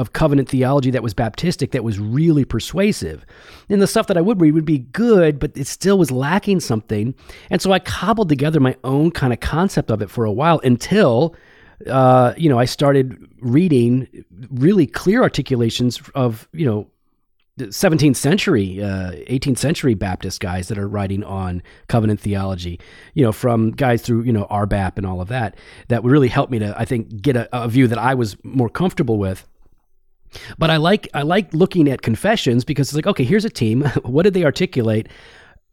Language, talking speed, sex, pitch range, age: English, 195 wpm, male, 115-155 Hz, 40-59